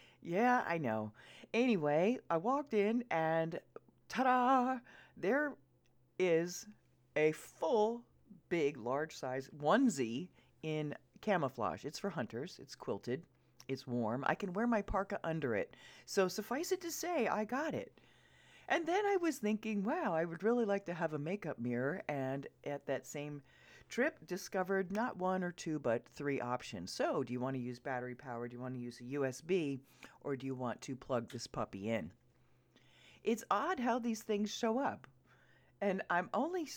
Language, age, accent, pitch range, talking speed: English, 40-59, American, 130-210 Hz, 170 wpm